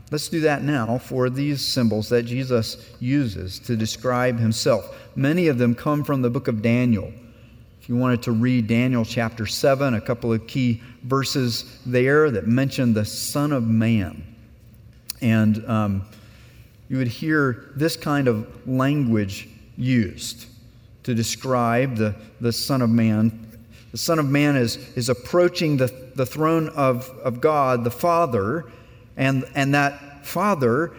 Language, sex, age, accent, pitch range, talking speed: English, male, 40-59, American, 115-140 Hz, 150 wpm